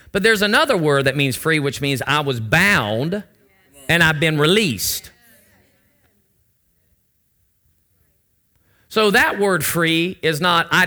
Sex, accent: male, American